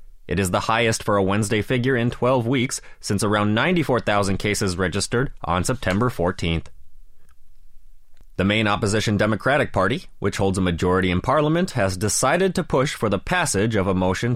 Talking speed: 165 wpm